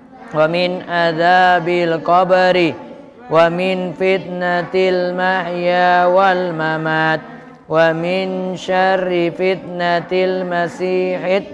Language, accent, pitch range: Indonesian, native, 160-190 Hz